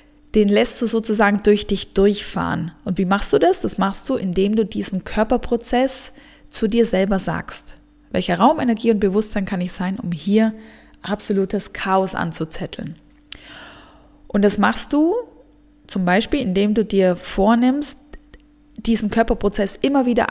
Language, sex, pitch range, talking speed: German, female, 185-240 Hz, 150 wpm